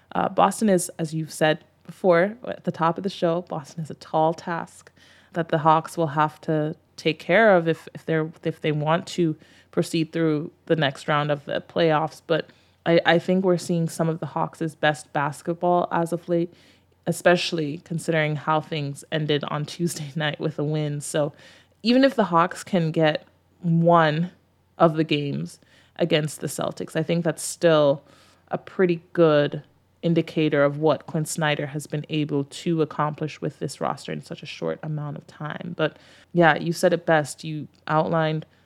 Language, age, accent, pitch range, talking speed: English, 20-39, American, 155-170 Hz, 180 wpm